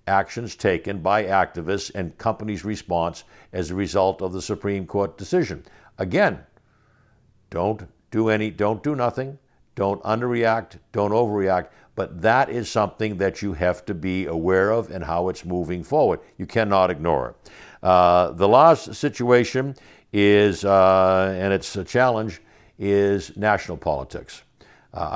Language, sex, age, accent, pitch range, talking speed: English, male, 60-79, American, 90-110 Hz, 145 wpm